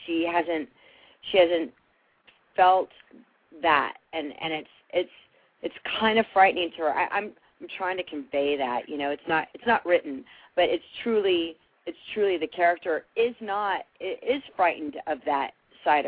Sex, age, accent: female, 40-59, American